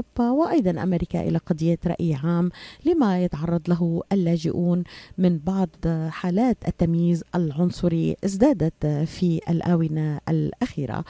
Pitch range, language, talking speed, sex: 165-195 Hz, Arabic, 105 wpm, female